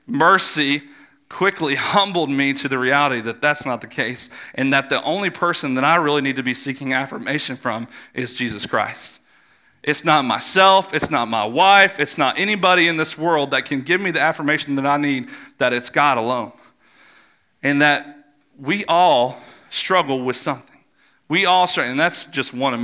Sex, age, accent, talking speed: male, 40-59, American, 185 wpm